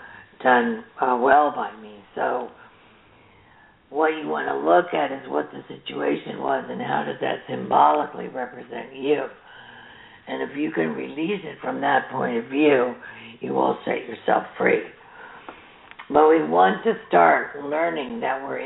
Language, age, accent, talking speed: English, 60-79, American, 155 wpm